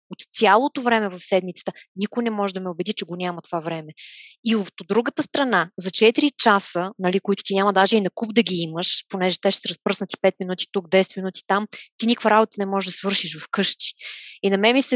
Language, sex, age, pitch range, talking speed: Bulgarian, female, 20-39, 195-240 Hz, 235 wpm